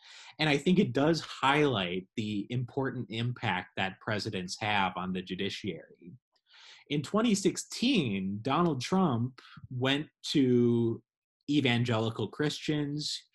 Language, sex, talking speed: English, male, 105 wpm